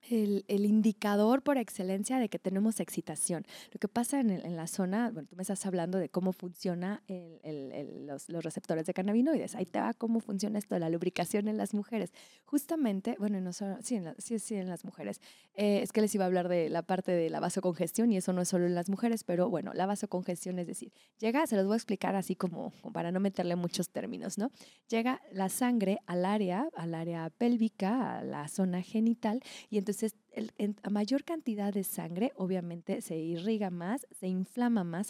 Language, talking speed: Spanish, 210 wpm